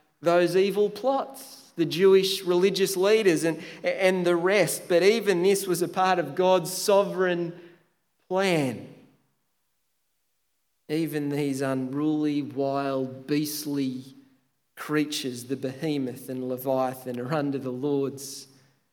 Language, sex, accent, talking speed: English, male, Australian, 110 wpm